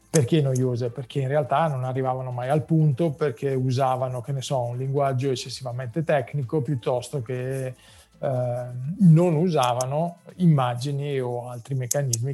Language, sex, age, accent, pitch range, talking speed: Italian, male, 40-59, native, 130-150 Hz, 135 wpm